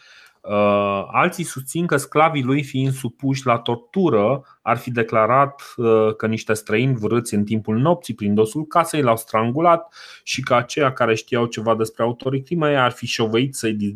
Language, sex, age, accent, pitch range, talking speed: Romanian, male, 30-49, native, 105-135 Hz, 160 wpm